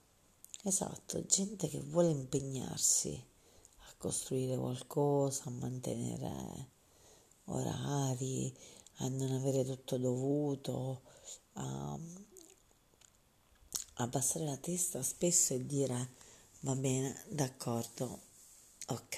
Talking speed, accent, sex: 85 wpm, native, female